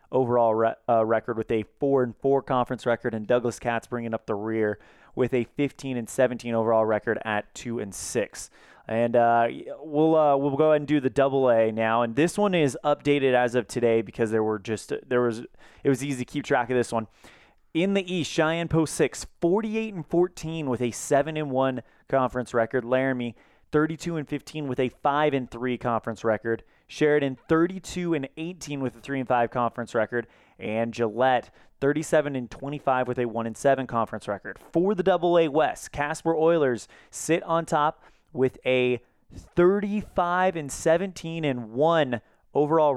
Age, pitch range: 20-39, 120-150 Hz